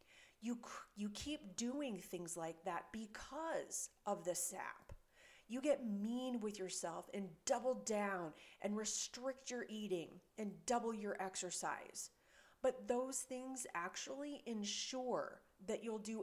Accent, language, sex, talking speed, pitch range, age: American, English, female, 130 wpm, 185-235 Hz, 30-49